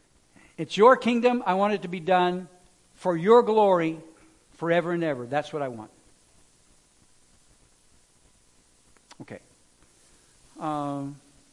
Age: 60-79